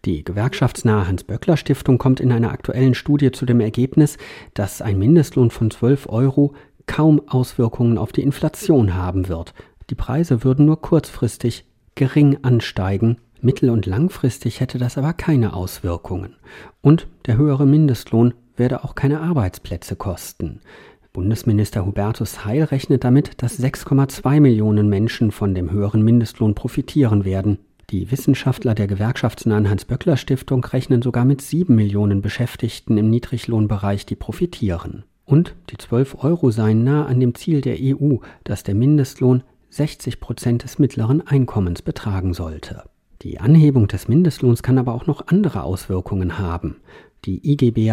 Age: 40-59